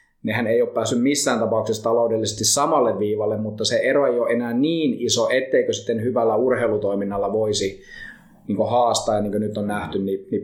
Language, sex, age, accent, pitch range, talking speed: Finnish, male, 20-39, native, 105-125 Hz, 180 wpm